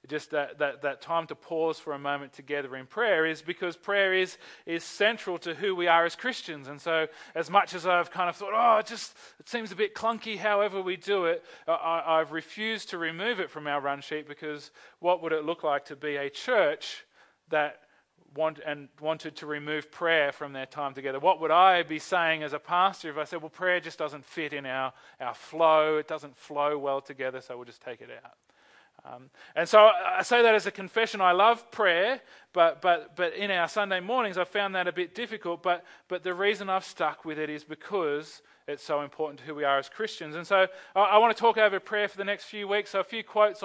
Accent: Australian